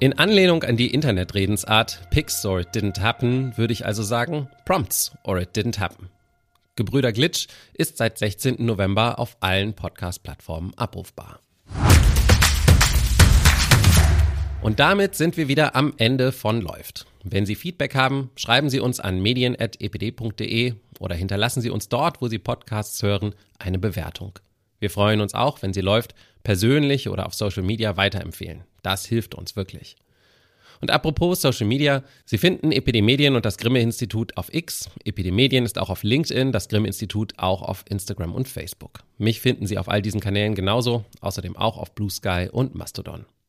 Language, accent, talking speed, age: German, German, 155 wpm, 30-49